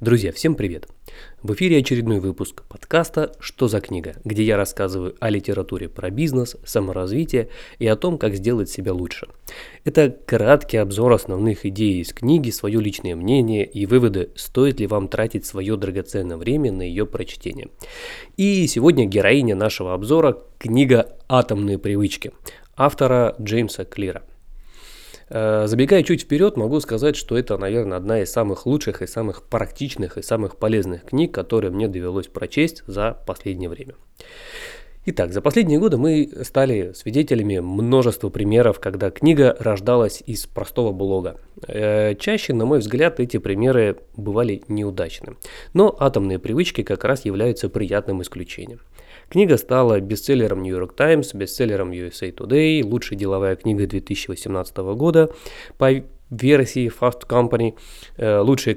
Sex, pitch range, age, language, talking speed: male, 100-135 Hz, 20-39, Russian, 140 wpm